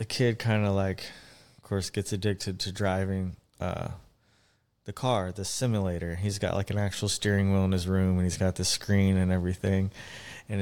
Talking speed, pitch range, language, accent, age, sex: 190 wpm, 95-110 Hz, English, American, 20-39, male